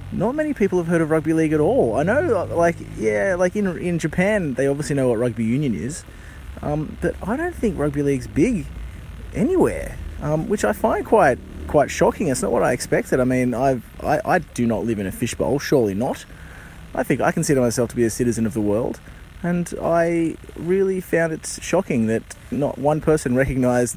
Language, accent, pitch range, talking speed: English, Australian, 115-155 Hz, 205 wpm